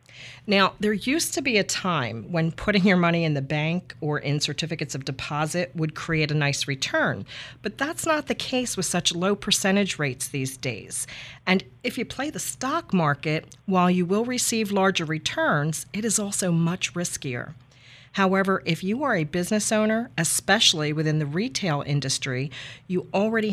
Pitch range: 145-200 Hz